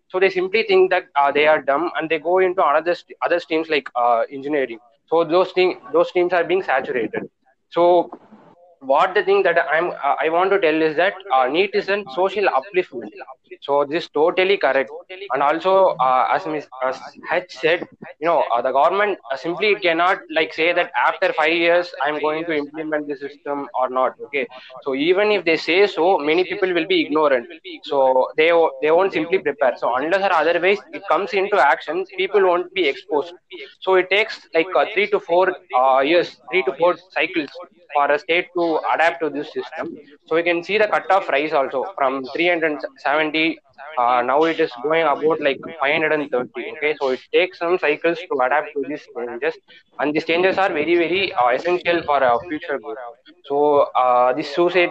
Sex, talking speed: male, 195 wpm